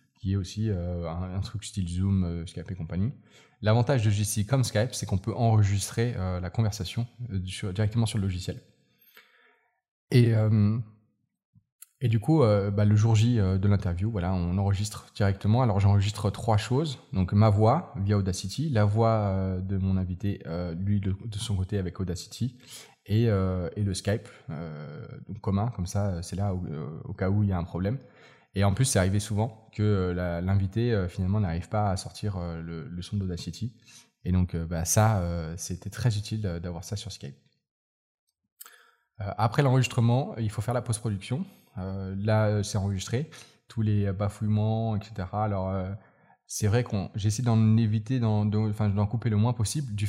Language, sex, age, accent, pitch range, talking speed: French, male, 20-39, French, 95-115 Hz, 185 wpm